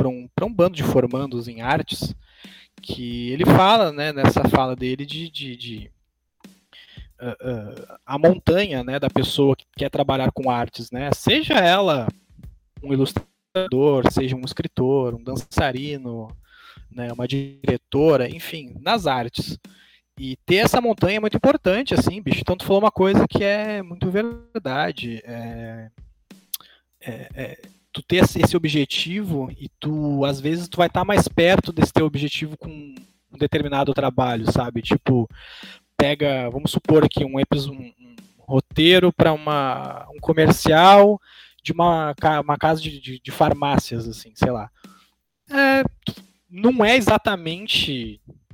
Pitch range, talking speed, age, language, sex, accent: 130-170 Hz, 140 wpm, 20-39, Portuguese, male, Brazilian